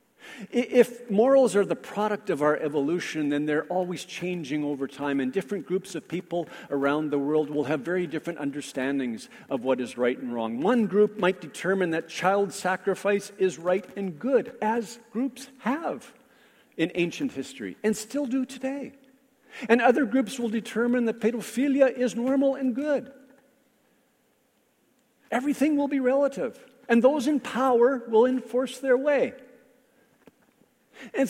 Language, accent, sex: English, American, male